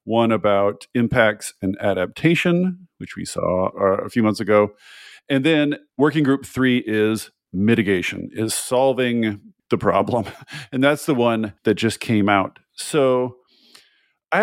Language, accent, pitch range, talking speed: English, American, 100-130 Hz, 140 wpm